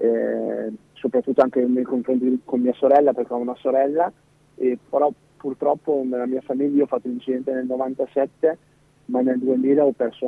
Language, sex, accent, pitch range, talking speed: Italian, male, native, 125-145 Hz, 170 wpm